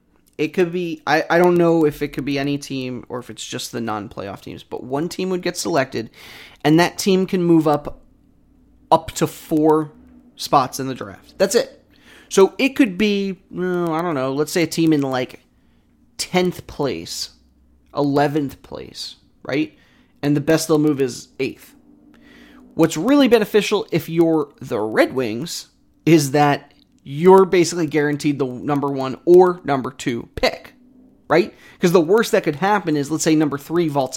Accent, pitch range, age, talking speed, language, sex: American, 135-175 Hz, 30-49, 175 wpm, English, male